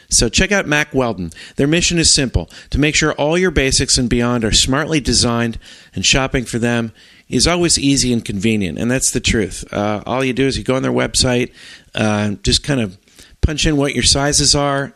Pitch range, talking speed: 110-145 Hz, 215 wpm